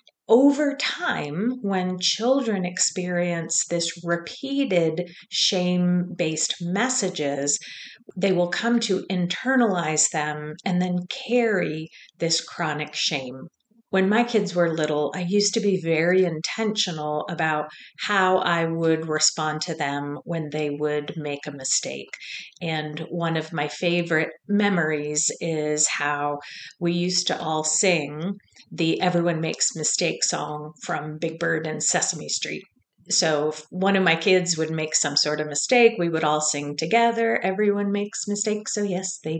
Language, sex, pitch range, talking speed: English, female, 155-195 Hz, 140 wpm